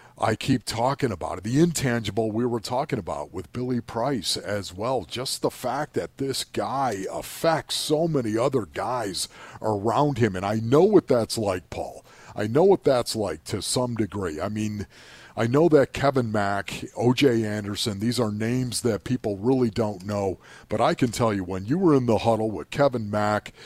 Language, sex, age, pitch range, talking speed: English, male, 50-69, 105-130 Hz, 190 wpm